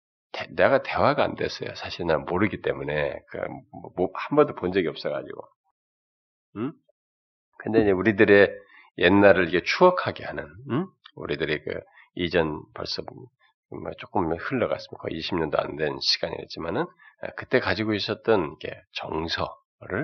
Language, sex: Korean, male